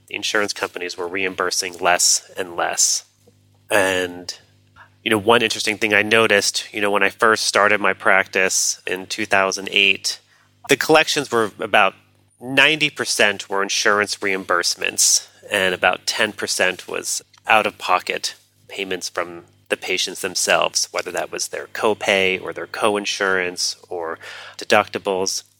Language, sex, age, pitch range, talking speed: English, male, 30-49, 95-110 Hz, 125 wpm